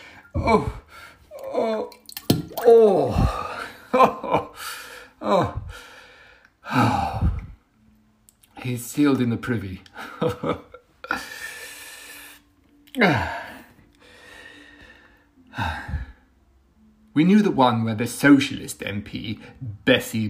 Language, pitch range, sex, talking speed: English, 110-145 Hz, male, 60 wpm